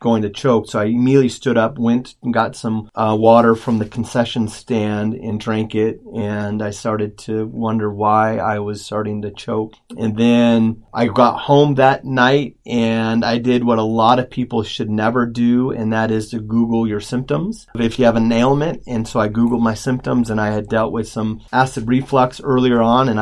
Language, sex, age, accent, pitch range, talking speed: English, male, 30-49, American, 105-120 Hz, 205 wpm